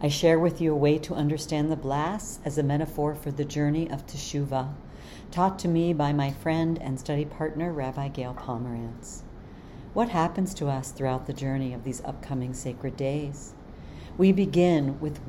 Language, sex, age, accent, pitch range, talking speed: English, female, 50-69, American, 135-165 Hz, 175 wpm